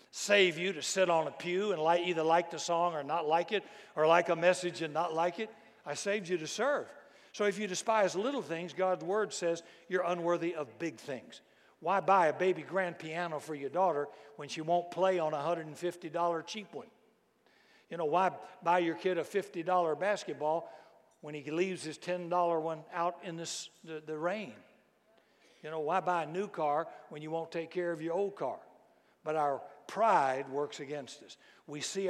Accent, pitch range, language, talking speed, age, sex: American, 155-185 Hz, English, 200 wpm, 60-79, male